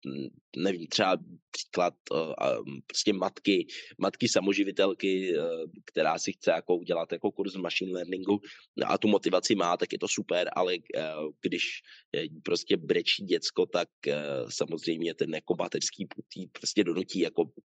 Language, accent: Czech, native